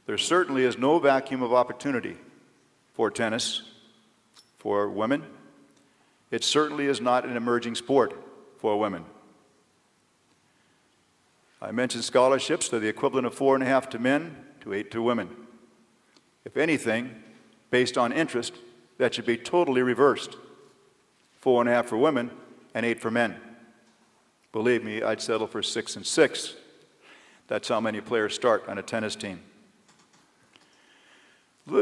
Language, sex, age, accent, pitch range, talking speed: English, male, 50-69, American, 120-140 Hz, 140 wpm